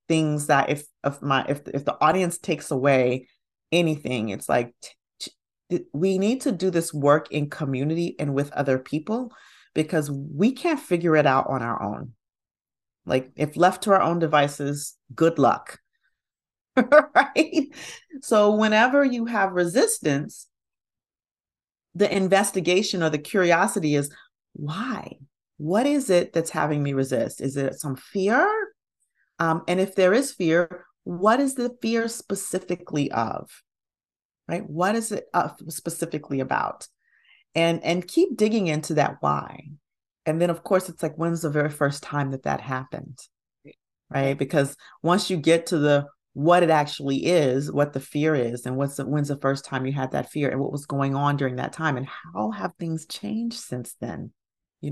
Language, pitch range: English, 140-190 Hz